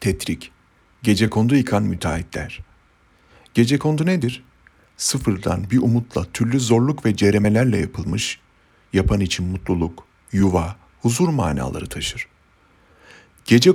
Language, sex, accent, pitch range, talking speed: Turkish, male, native, 90-115 Hz, 105 wpm